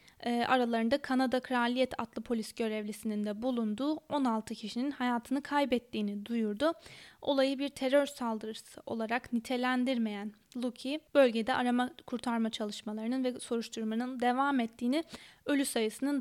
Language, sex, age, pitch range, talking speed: Turkish, female, 10-29, 225-275 Hz, 110 wpm